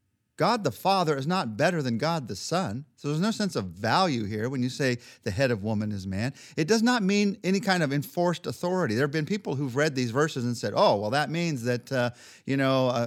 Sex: male